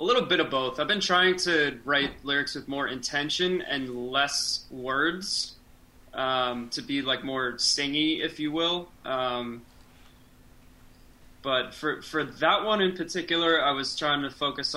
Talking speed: 160 wpm